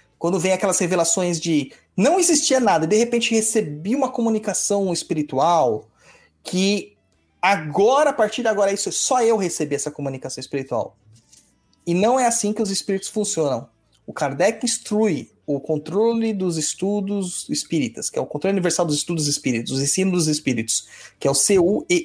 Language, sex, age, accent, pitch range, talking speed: Portuguese, male, 30-49, Brazilian, 140-215 Hz, 160 wpm